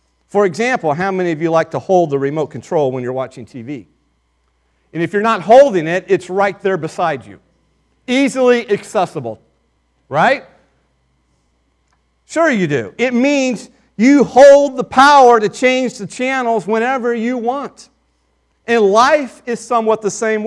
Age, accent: 40-59, American